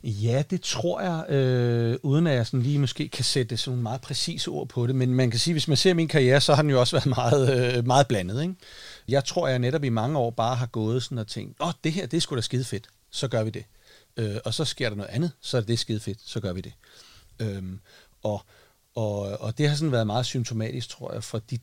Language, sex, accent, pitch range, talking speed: Danish, male, native, 110-135 Hz, 270 wpm